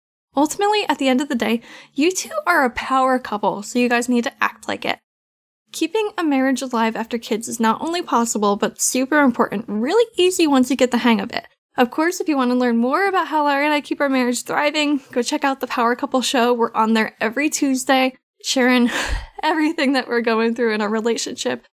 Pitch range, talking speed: 235-290 Hz, 225 wpm